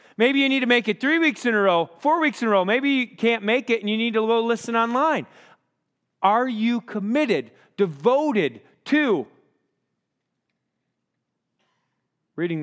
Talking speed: 160 wpm